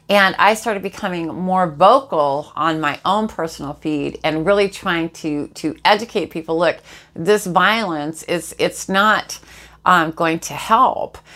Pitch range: 160-200 Hz